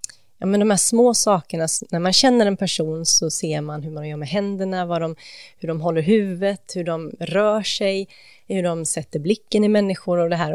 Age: 30-49